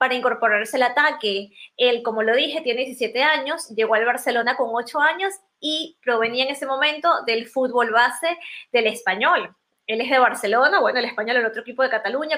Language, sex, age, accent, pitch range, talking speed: Spanish, female, 20-39, American, 230-295 Hz, 195 wpm